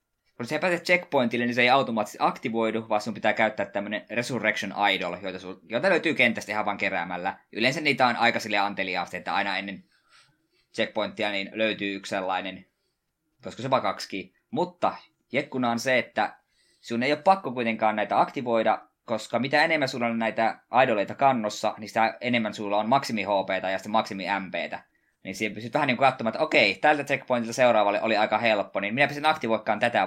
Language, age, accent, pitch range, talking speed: Finnish, 20-39, native, 100-125 Hz, 165 wpm